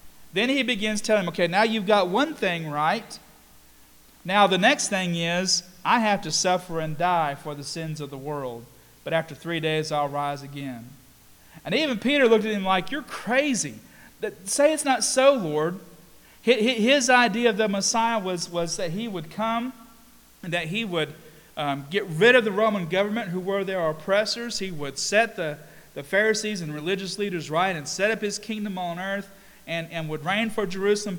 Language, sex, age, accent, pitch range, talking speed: English, male, 40-59, American, 155-210 Hz, 190 wpm